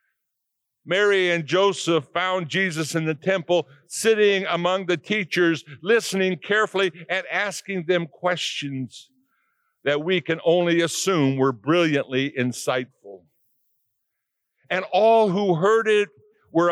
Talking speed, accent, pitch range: 115 wpm, American, 155-200 Hz